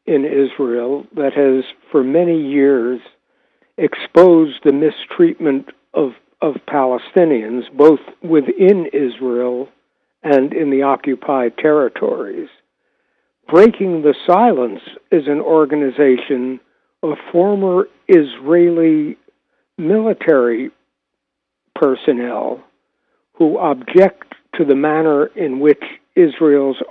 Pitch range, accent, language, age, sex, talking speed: 140-175 Hz, American, English, 60-79, male, 90 wpm